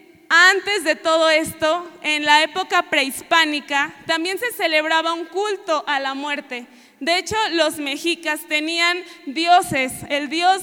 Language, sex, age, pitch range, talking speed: Spanish, female, 20-39, 290-355 Hz, 135 wpm